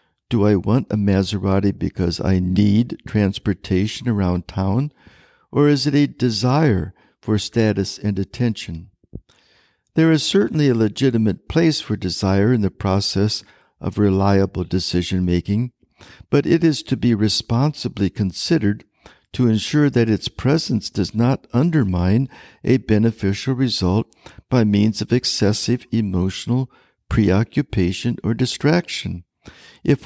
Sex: male